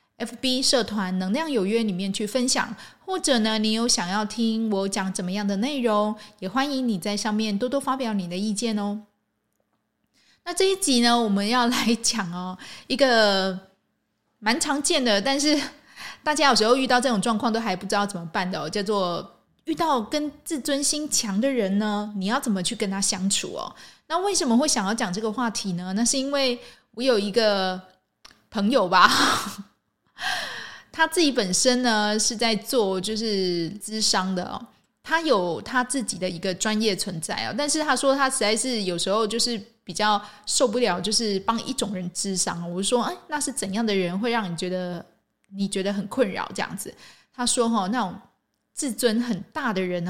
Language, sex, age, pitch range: Chinese, female, 20-39, 195-250 Hz